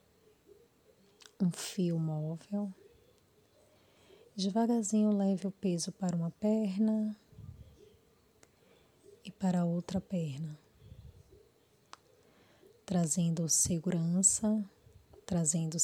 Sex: female